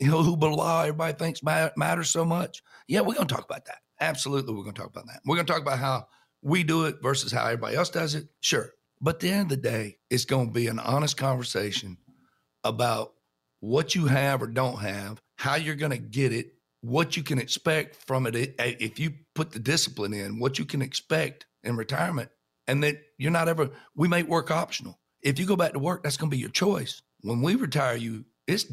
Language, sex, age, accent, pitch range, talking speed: English, male, 60-79, American, 120-155 Hz, 215 wpm